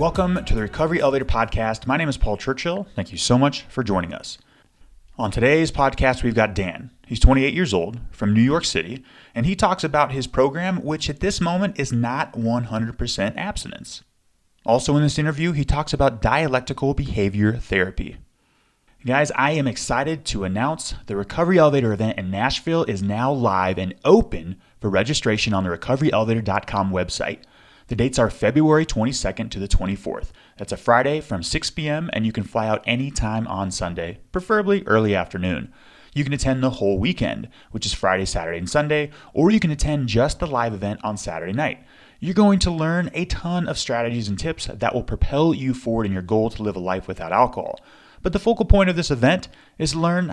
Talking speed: 190 wpm